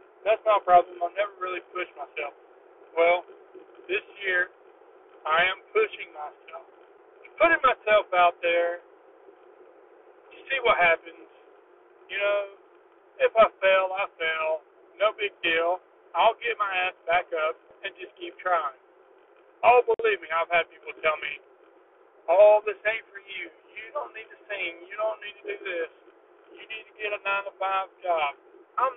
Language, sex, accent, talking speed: English, male, American, 155 wpm